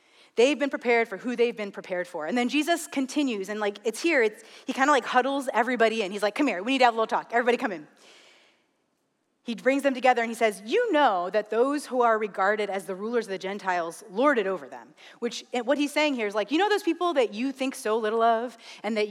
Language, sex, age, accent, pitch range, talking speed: English, female, 30-49, American, 210-280 Hz, 255 wpm